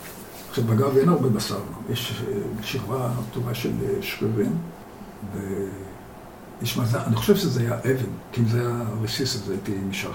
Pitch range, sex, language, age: 105-130 Hz, male, Hebrew, 60-79